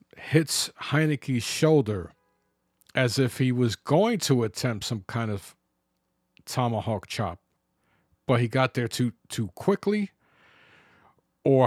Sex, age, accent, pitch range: male, 40-59, American, 110-145 Hz